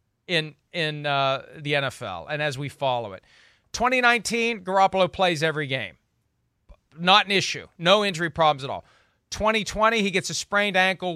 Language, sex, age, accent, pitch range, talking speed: English, male, 40-59, American, 135-180 Hz, 155 wpm